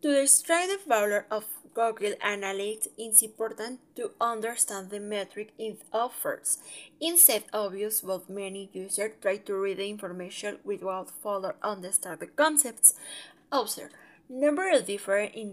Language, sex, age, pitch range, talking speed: English, female, 20-39, 195-280 Hz, 130 wpm